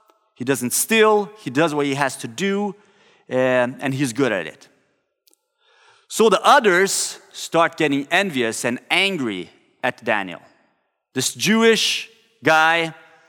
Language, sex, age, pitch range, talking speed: English, male, 30-49, 150-210 Hz, 130 wpm